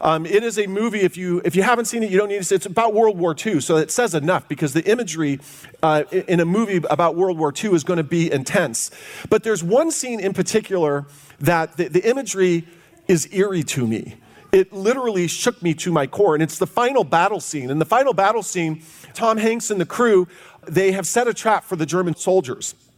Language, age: English, 40-59